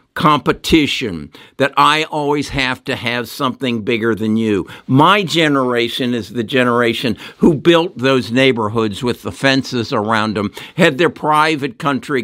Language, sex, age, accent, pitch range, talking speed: English, male, 60-79, American, 115-150 Hz, 140 wpm